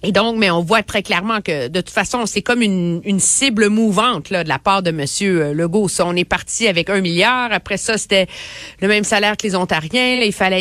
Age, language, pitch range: 30-49, French, 170-215 Hz